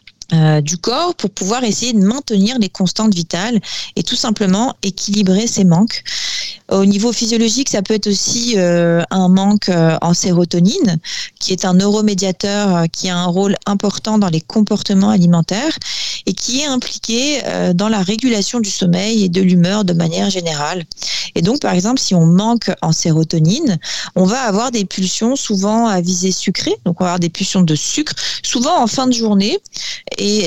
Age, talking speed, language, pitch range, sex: 30-49, 175 wpm, French, 185-235 Hz, female